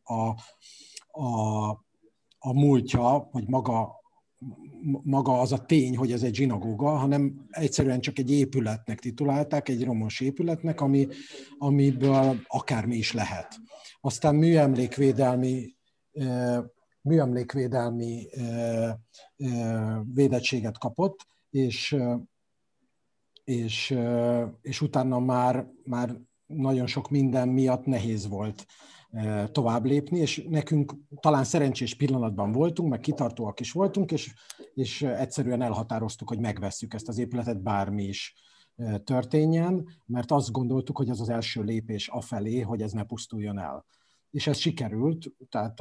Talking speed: 115 wpm